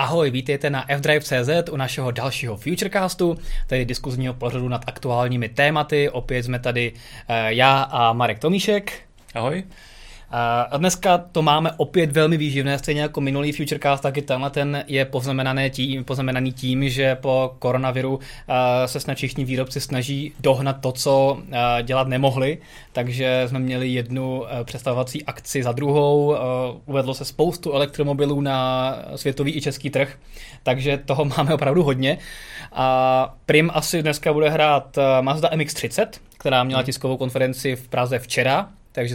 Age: 20-39